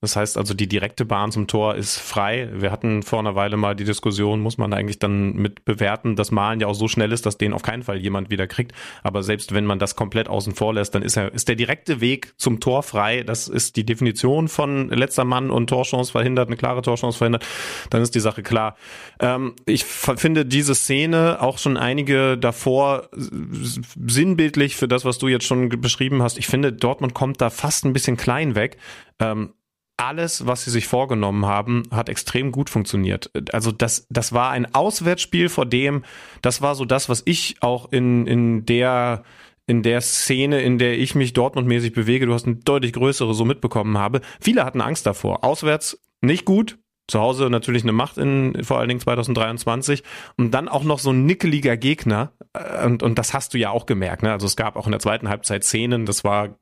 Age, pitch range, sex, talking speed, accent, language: 30-49, 110-130 Hz, male, 205 wpm, German, German